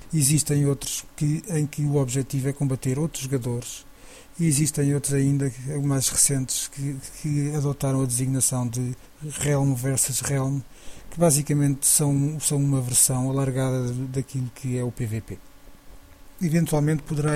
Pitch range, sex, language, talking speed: 130-145 Hz, male, English, 140 wpm